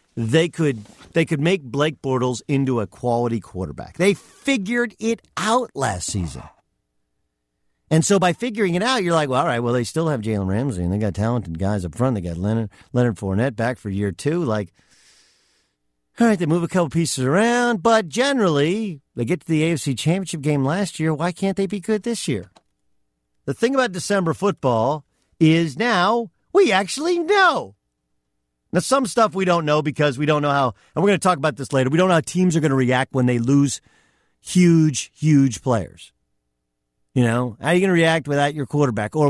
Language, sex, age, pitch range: English, male, 50-69, 120-175 Hz